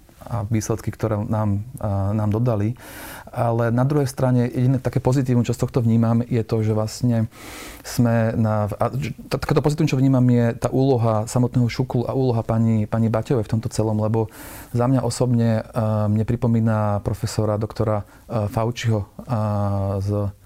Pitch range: 110-125 Hz